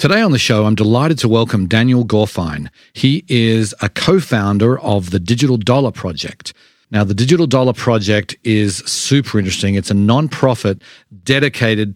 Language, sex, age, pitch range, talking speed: English, male, 40-59, 100-120 Hz, 155 wpm